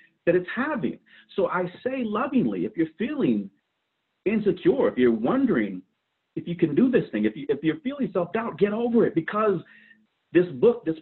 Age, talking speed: 50-69, 175 wpm